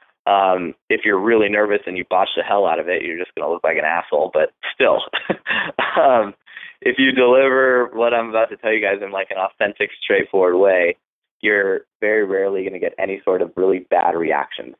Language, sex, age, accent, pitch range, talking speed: English, male, 20-39, American, 105-135 Hz, 205 wpm